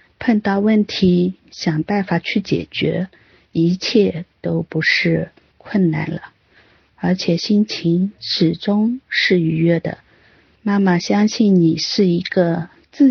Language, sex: Chinese, female